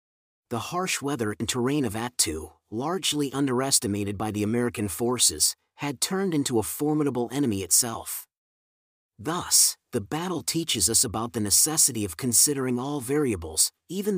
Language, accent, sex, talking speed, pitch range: English, American, male, 140 wpm, 110-145 Hz